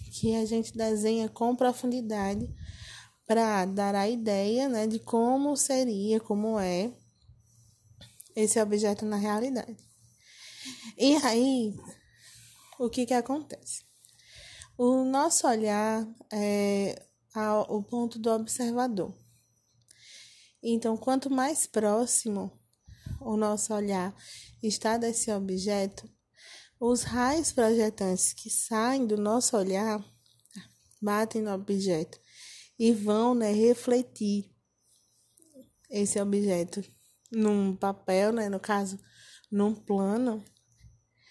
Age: 20-39